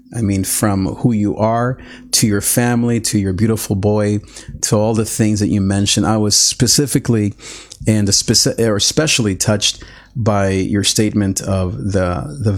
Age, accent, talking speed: 40-59, American, 155 wpm